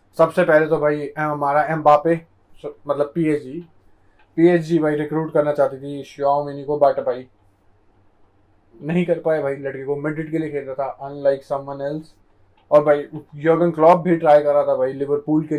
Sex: male